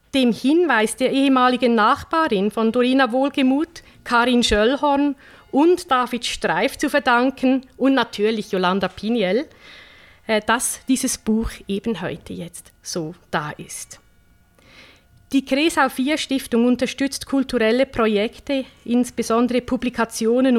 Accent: Swiss